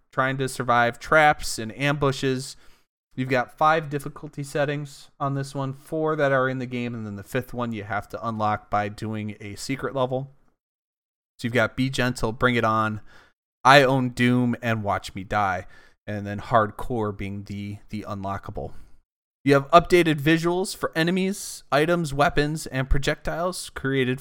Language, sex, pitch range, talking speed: English, male, 110-140 Hz, 165 wpm